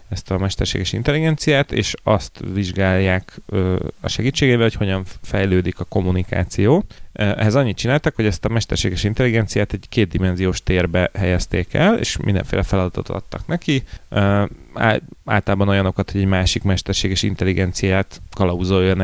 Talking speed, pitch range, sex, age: 125 wpm, 95-110 Hz, male, 30-49